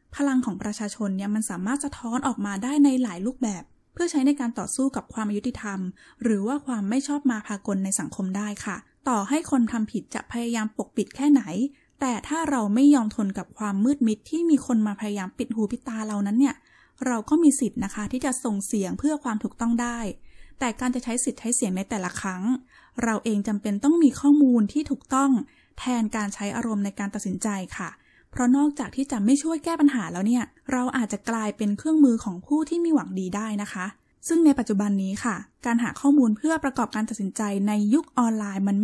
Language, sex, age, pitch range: Thai, female, 10-29, 210-270 Hz